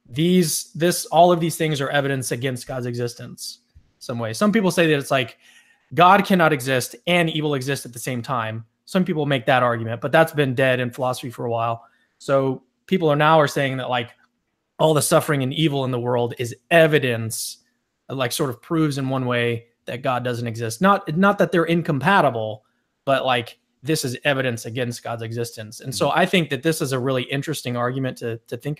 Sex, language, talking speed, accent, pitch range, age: male, English, 205 wpm, American, 125-155 Hz, 20-39